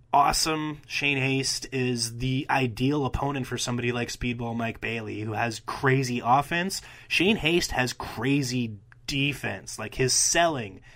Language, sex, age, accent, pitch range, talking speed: English, male, 20-39, American, 115-140 Hz, 135 wpm